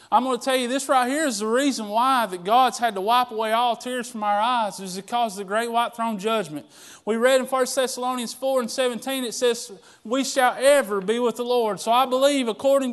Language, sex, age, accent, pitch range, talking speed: English, male, 20-39, American, 235-275 Hz, 240 wpm